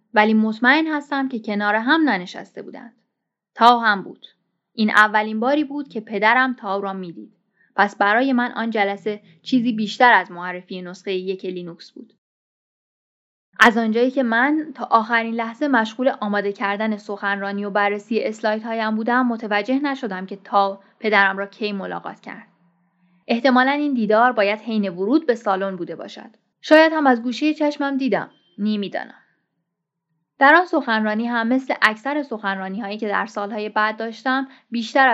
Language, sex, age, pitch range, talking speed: Persian, female, 10-29, 200-255 Hz, 150 wpm